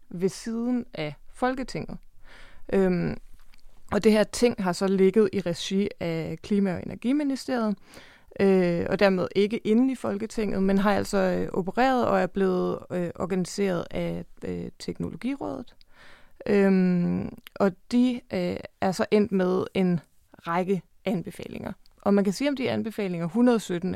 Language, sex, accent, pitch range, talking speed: Danish, female, native, 180-215 Hz, 125 wpm